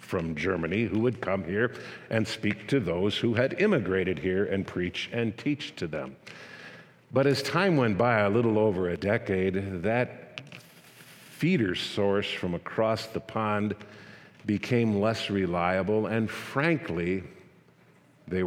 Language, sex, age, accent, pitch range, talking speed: English, male, 50-69, American, 90-115 Hz, 140 wpm